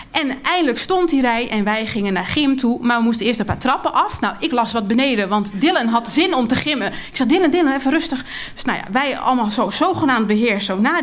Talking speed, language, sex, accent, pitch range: 255 wpm, Dutch, female, Dutch, 230-305 Hz